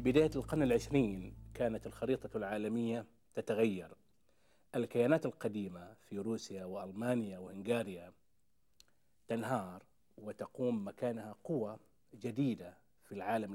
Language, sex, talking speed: Arabic, male, 90 wpm